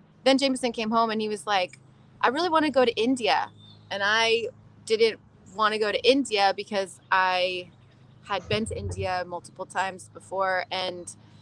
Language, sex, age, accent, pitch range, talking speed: English, female, 20-39, American, 175-215 Hz, 175 wpm